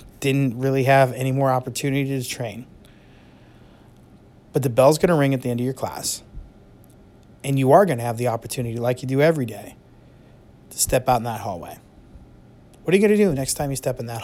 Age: 30-49